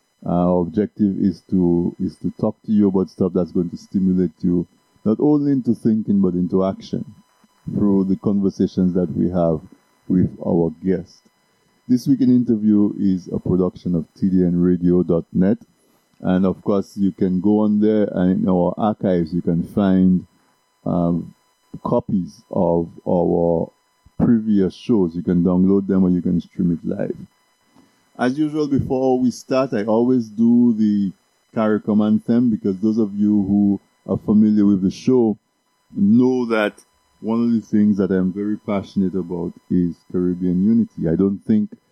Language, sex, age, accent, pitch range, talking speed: English, male, 50-69, French, 90-105 Hz, 155 wpm